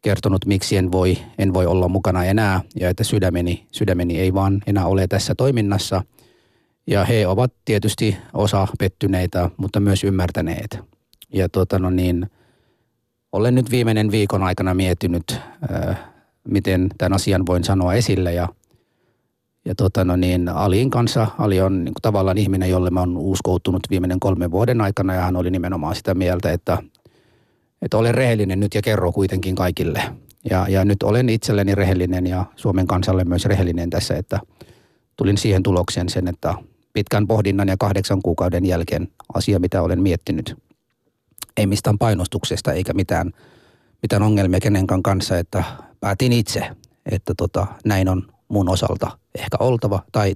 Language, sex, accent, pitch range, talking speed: Finnish, male, native, 90-110 Hz, 155 wpm